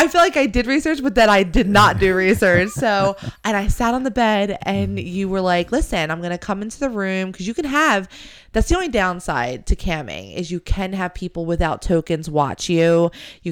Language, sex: English, female